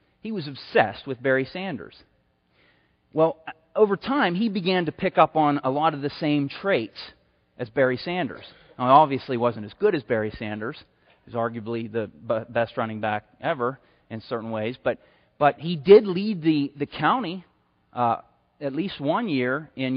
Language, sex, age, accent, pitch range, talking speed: English, male, 30-49, American, 125-195 Hz, 175 wpm